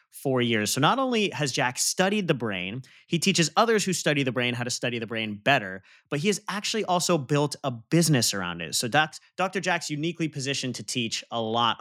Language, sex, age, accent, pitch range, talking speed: English, male, 30-49, American, 120-165 Hz, 215 wpm